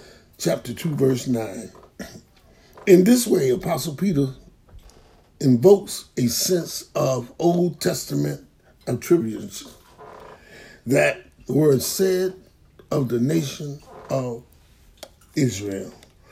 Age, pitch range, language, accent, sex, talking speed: 60-79, 125-180 Hz, English, American, male, 90 wpm